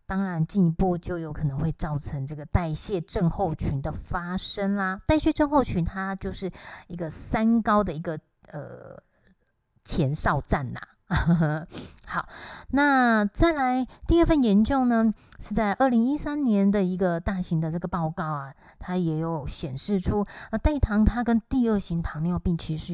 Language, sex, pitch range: Chinese, female, 170-230 Hz